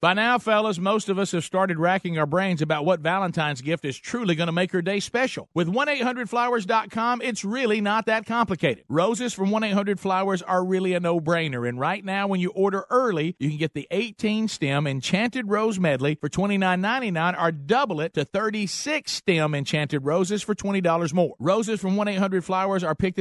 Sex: male